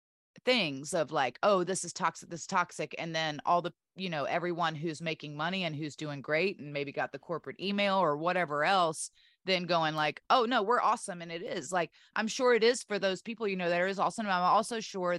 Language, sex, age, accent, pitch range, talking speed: English, female, 30-49, American, 145-190 Hz, 235 wpm